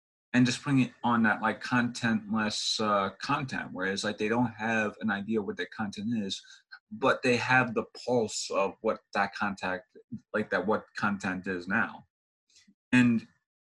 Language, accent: English, American